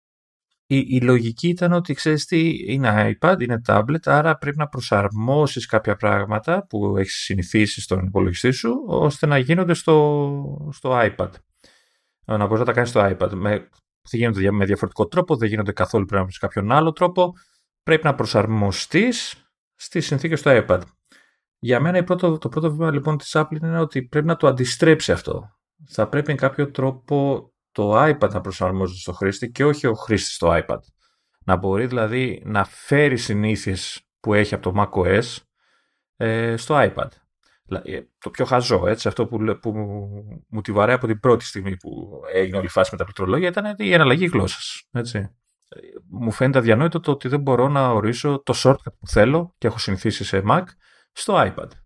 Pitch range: 105-150 Hz